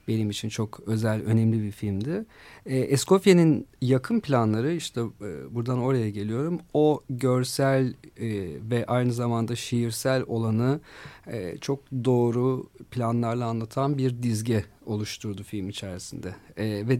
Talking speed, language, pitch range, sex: 110 wpm, Turkish, 110-130 Hz, male